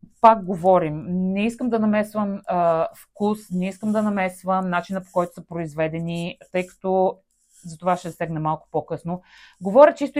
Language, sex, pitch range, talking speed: Bulgarian, female, 175-235 Hz, 160 wpm